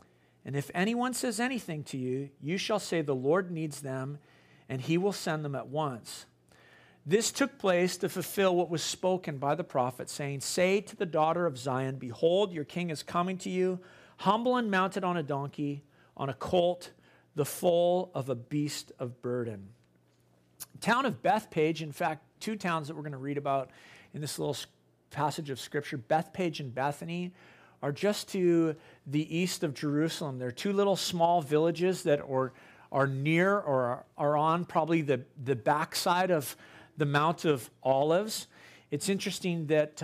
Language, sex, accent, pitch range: English, male, American, 140-180 Hz